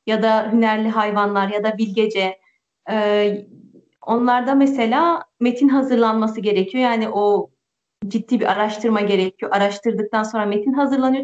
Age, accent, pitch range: 30-49, native, 225-285 Hz